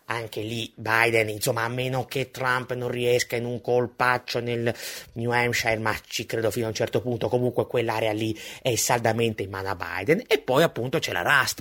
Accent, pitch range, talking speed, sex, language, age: native, 120-145 Hz, 200 wpm, male, Italian, 30-49